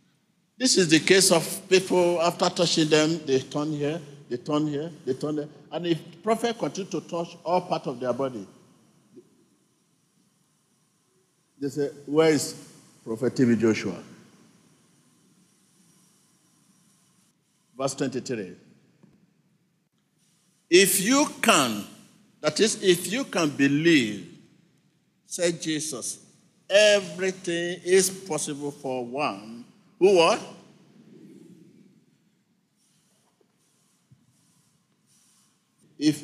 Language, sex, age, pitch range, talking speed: English, male, 50-69, 150-195 Hz, 95 wpm